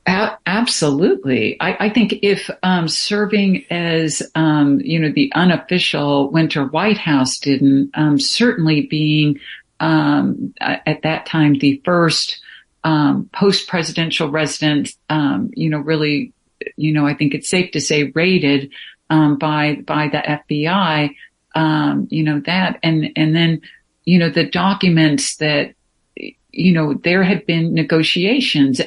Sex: female